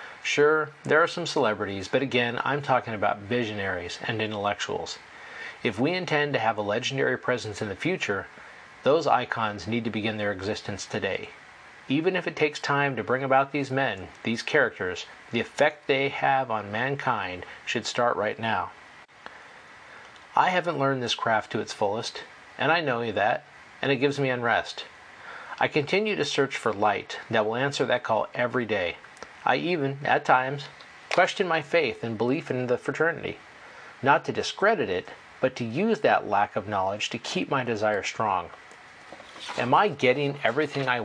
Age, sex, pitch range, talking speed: 40-59, male, 110-145 Hz, 170 wpm